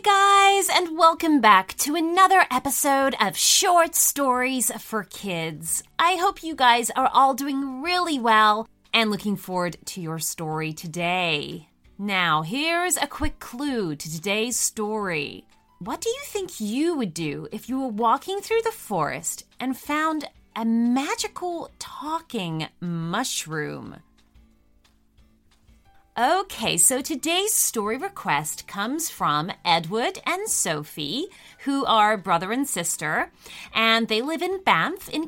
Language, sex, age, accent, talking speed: English, female, 30-49, American, 135 wpm